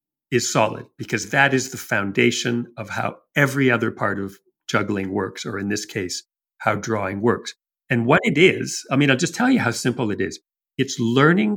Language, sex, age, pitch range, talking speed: English, male, 50-69, 115-155 Hz, 195 wpm